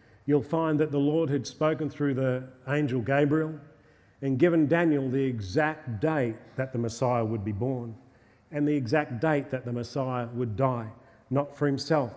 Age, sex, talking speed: 40-59, male, 175 wpm